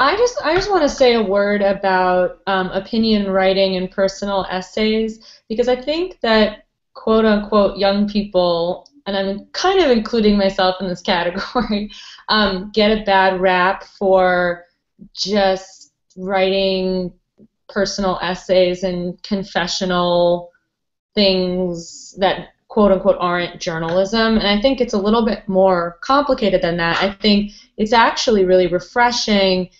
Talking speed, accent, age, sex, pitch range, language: 135 wpm, American, 20-39, female, 185-210 Hz, English